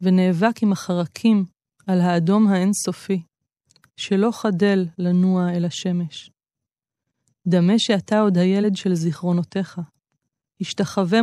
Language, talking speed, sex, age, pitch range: Hebrew, 95 wpm, female, 20-39, 170-195 Hz